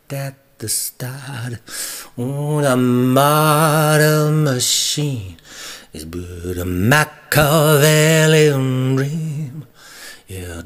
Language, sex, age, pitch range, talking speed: English, male, 40-59, 115-140 Hz, 75 wpm